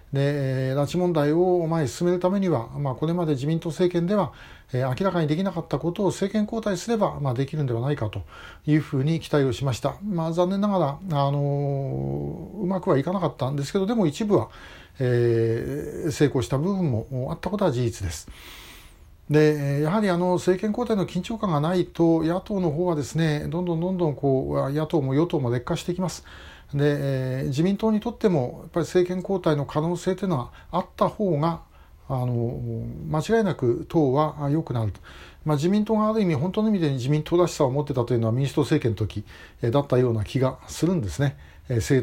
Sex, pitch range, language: male, 130-180 Hz, Japanese